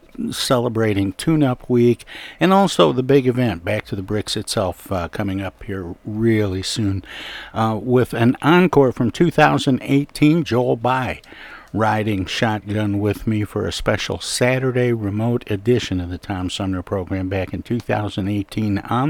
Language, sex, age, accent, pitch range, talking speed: English, male, 60-79, American, 100-120 Hz, 145 wpm